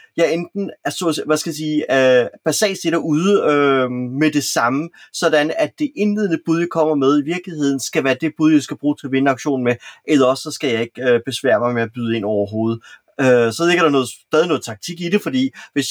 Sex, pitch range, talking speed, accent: male, 135-170 Hz, 215 wpm, native